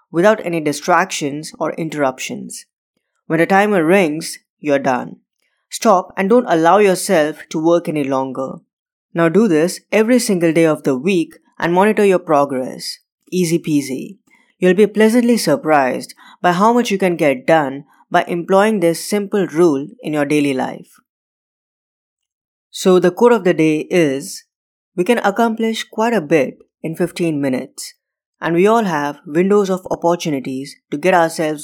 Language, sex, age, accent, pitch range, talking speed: English, female, 20-39, Indian, 150-195 Hz, 155 wpm